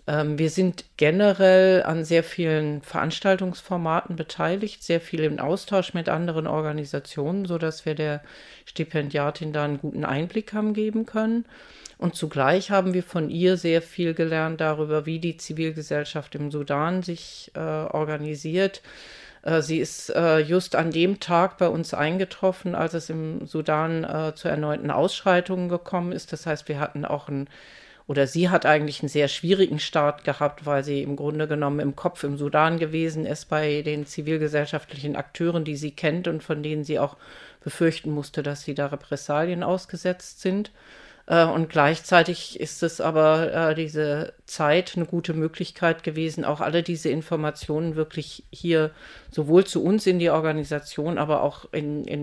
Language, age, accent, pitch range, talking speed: English, 50-69, German, 150-175 Hz, 160 wpm